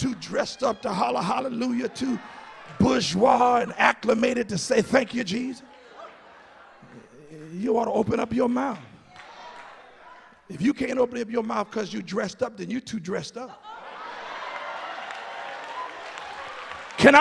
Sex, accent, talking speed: male, American, 135 wpm